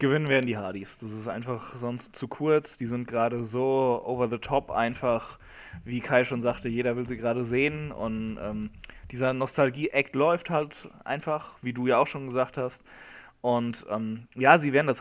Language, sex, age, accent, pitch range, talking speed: German, male, 20-39, German, 120-140 Hz, 190 wpm